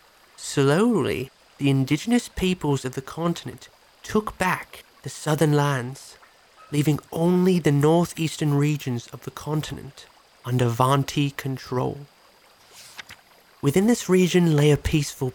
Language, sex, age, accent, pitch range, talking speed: English, male, 30-49, British, 130-155 Hz, 115 wpm